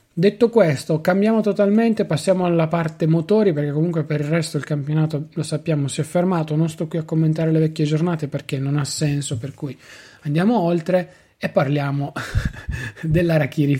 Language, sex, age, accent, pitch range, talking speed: Italian, male, 20-39, native, 145-180 Hz, 170 wpm